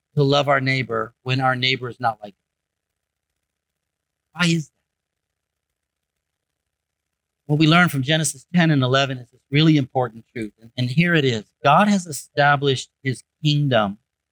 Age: 50-69